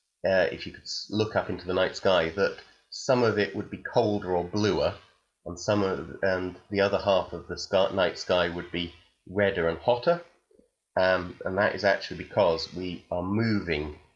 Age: 30-49